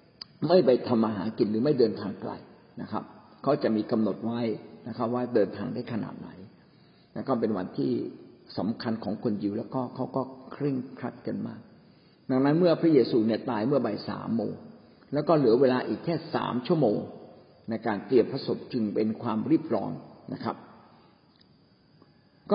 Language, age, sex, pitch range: Thai, 60-79, male, 110-140 Hz